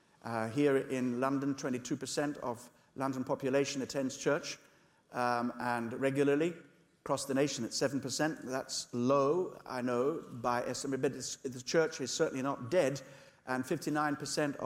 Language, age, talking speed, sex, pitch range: English, 60-79, 135 wpm, male, 130-155 Hz